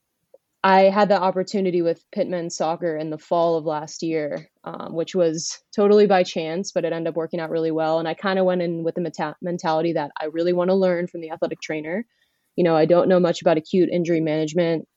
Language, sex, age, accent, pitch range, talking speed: English, female, 20-39, American, 165-190 Hz, 225 wpm